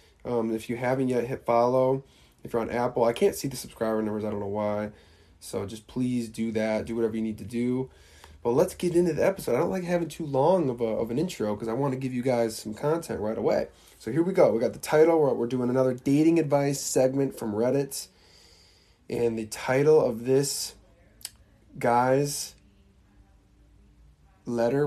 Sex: male